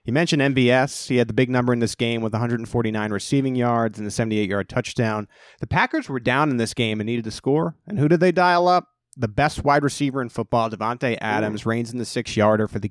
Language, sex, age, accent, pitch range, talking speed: English, male, 30-49, American, 115-145 Hz, 230 wpm